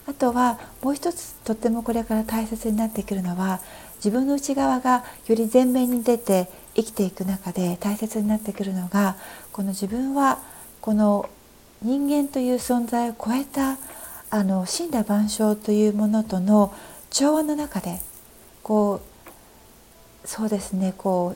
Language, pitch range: Japanese, 195-250 Hz